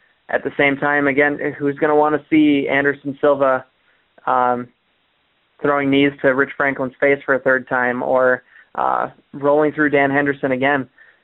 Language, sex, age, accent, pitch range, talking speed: English, male, 20-39, American, 135-150 Hz, 165 wpm